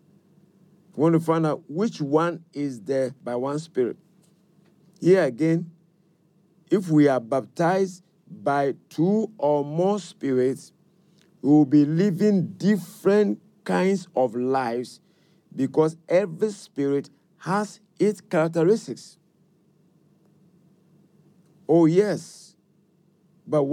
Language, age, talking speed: English, 50-69, 100 wpm